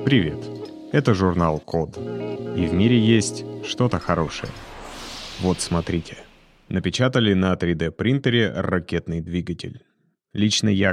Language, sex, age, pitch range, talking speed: Russian, male, 30-49, 85-105 Hz, 105 wpm